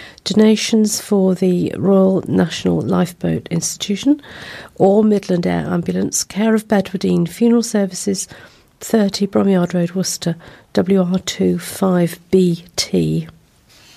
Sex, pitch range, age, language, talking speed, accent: female, 175-210 Hz, 50-69, English, 95 wpm, British